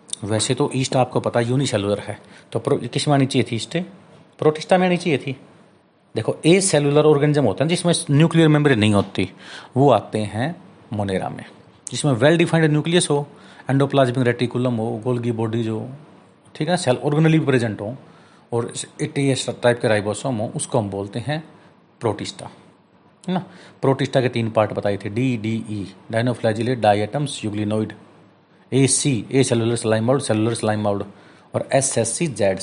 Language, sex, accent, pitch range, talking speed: Hindi, male, native, 110-145 Hz, 165 wpm